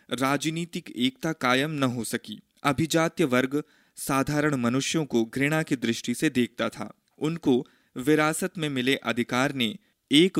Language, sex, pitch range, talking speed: Hindi, male, 120-155 Hz, 140 wpm